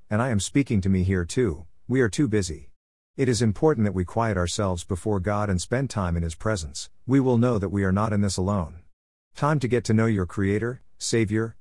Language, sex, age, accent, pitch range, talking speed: English, male, 50-69, American, 90-115 Hz, 235 wpm